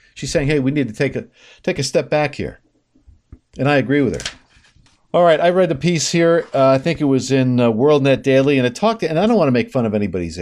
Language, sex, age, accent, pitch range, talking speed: English, male, 50-69, American, 120-170 Hz, 275 wpm